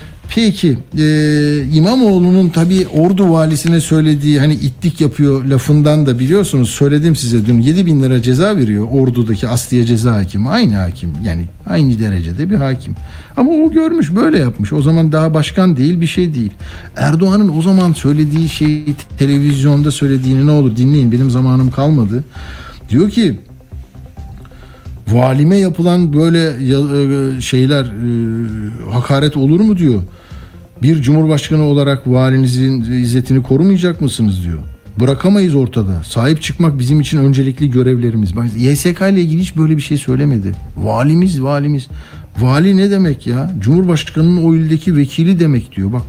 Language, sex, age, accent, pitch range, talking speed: Turkish, male, 60-79, native, 120-155 Hz, 140 wpm